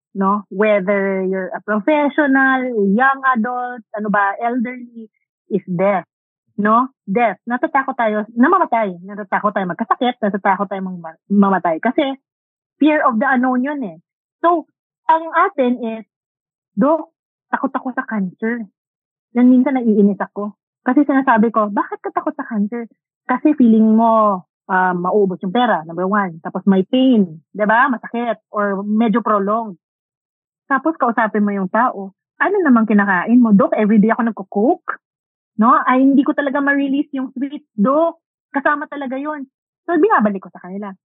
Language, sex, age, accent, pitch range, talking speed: Filipino, female, 30-49, native, 195-260 Hz, 145 wpm